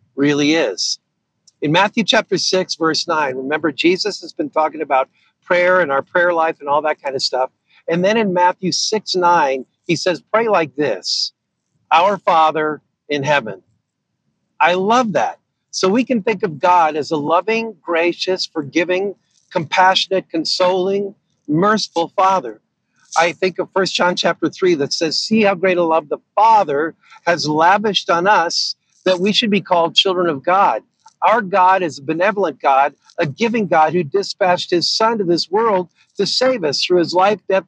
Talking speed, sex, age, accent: 175 wpm, male, 50-69, American